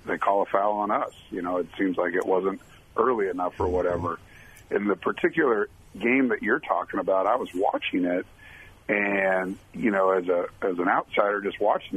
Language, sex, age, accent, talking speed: English, male, 50-69, American, 195 wpm